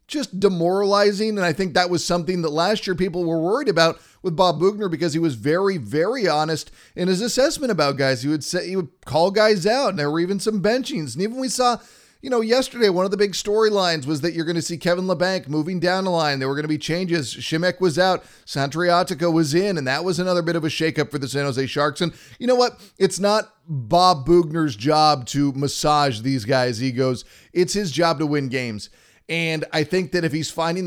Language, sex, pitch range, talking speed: English, male, 150-185 Hz, 230 wpm